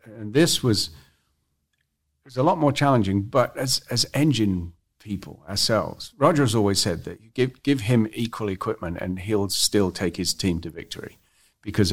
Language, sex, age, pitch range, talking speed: English, male, 50-69, 90-105 Hz, 165 wpm